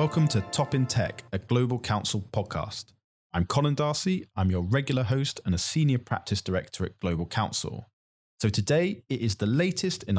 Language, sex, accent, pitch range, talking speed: English, male, British, 100-135 Hz, 185 wpm